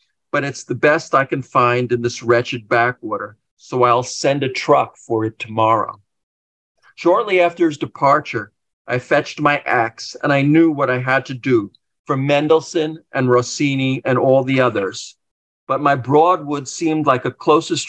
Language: English